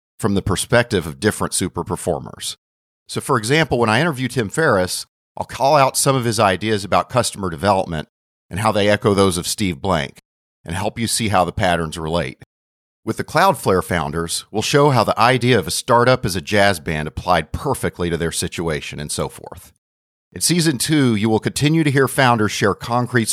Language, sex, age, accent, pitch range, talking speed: English, male, 40-59, American, 85-115 Hz, 195 wpm